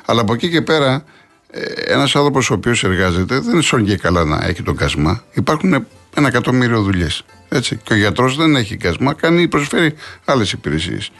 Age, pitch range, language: 60-79, 90-130 Hz, Greek